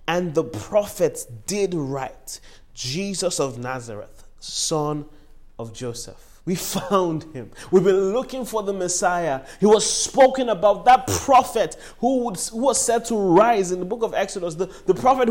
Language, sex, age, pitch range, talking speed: English, male, 30-49, 135-210 Hz, 155 wpm